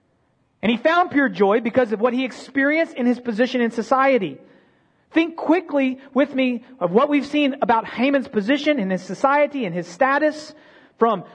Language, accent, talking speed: English, American, 175 wpm